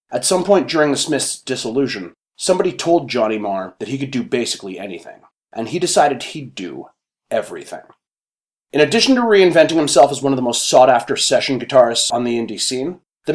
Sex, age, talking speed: male, 30-49, 185 wpm